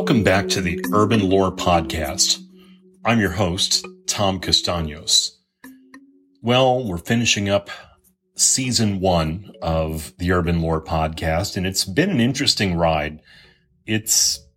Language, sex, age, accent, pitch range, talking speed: English, male, 30-49, American, 85-120 Hz, 125 wpm